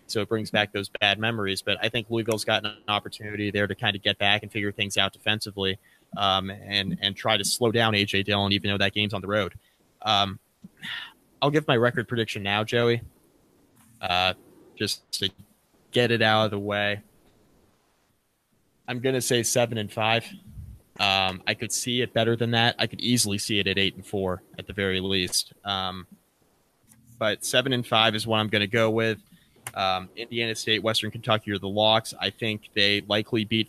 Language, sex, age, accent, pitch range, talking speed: English, male, 20-39, American, 100-115 Hz, 200 wpm